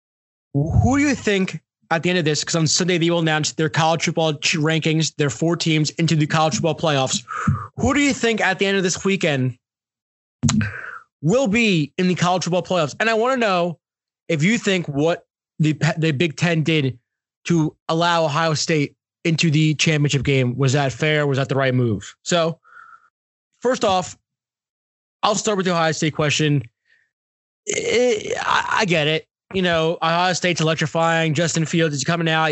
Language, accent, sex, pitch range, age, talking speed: English, American, male, 155-185 Hz, 20-39, 180 wpm